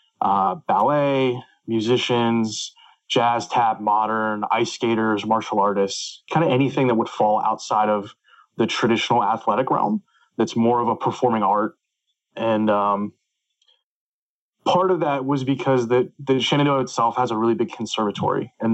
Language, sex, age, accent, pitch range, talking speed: English, male, 20-39, American, 110-130 Hz, 145 wpm